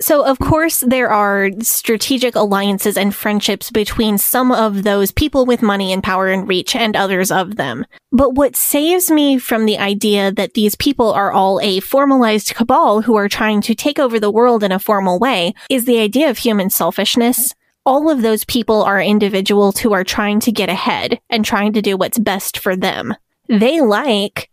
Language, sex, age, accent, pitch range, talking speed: English, female, 20-39, American, 200-250 Hz, 195 wpm